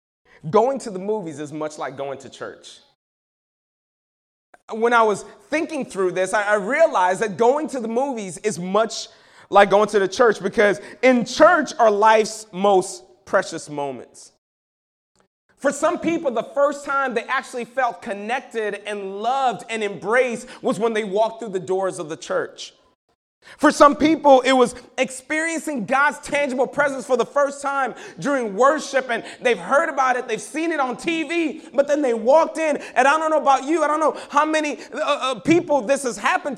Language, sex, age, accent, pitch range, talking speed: English, male, 30-49, American, 220-300 Hz, 180 wpm